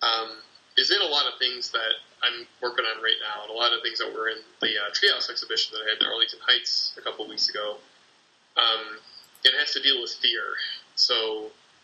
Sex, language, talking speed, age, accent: male, English, 215 wpm, 20-39, American